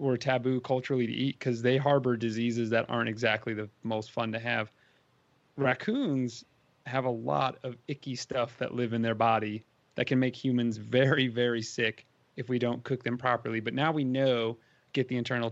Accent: American